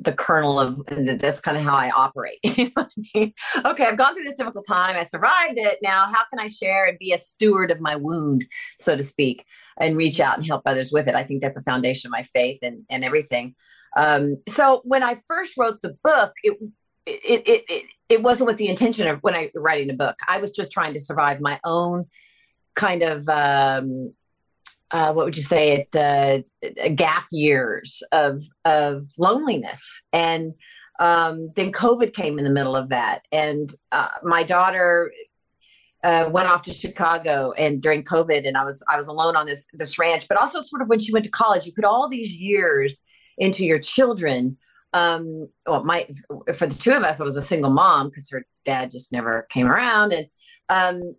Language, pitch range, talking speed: English, 145-215 Hz, 205 wpm